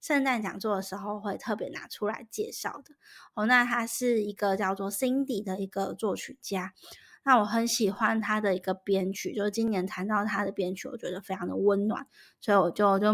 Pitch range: 200-250 Hz